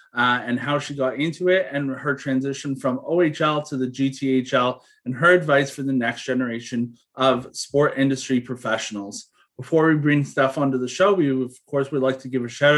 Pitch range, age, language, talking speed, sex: 125-145 Hz, 30-49, English, 195 wpm, male